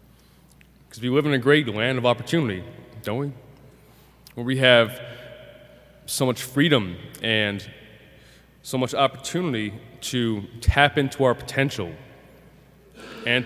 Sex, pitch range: male, 110-135 Hz